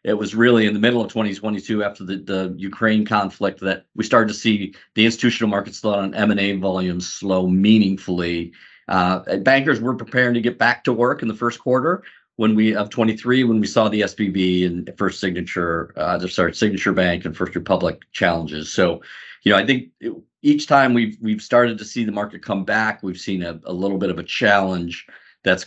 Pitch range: 90-115 Hz